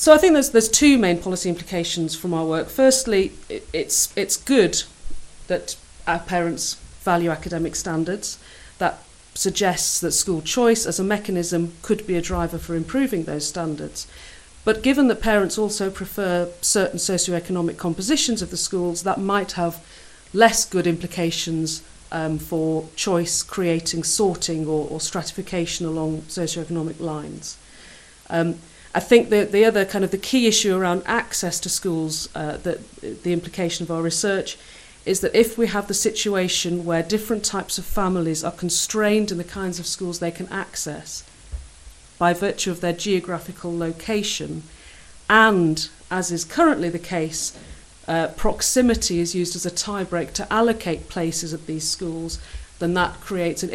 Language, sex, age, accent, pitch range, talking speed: English, female, 40-59, British, 165-195 Hz, 155 wpm